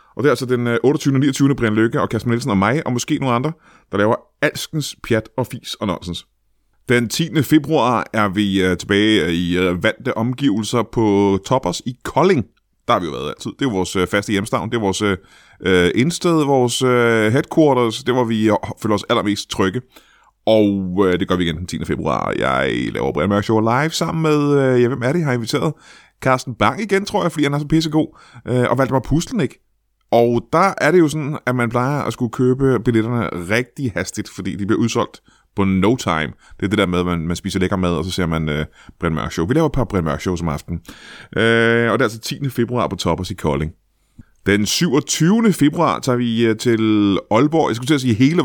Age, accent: 30-49, native